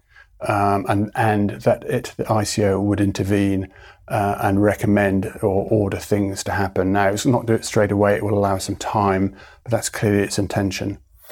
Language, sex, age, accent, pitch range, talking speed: English, male, 30-49, British, 100-110 Hz, 180 wpm